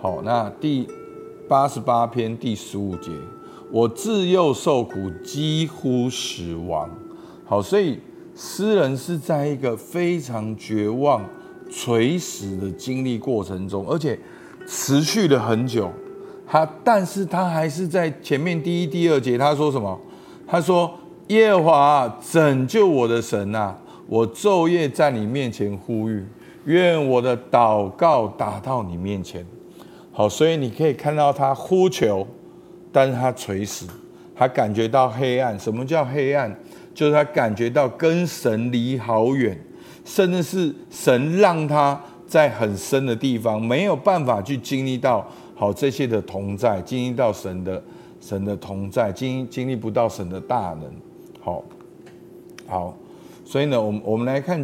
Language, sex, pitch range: Chinese, male, 110-160 Hz